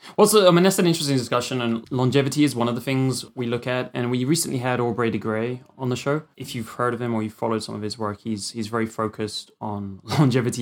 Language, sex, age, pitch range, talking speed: English, male, 20-39, 110-135 Hz, 260 wpm